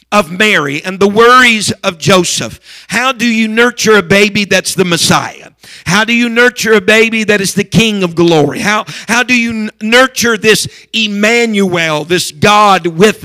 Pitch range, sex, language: 185-225 Hz, male, English